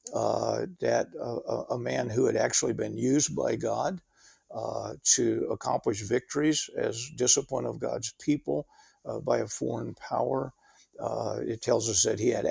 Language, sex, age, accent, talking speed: English, male, 50-69, American, 160 wpm